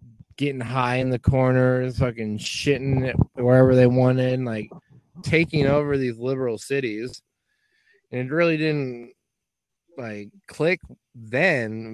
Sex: male